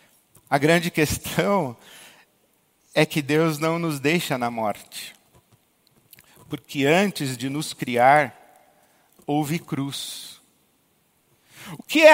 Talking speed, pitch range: 105 wpm, 150-220 Hz